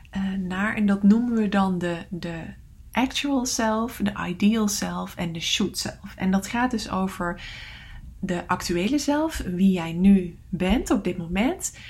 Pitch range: 180-220 Hz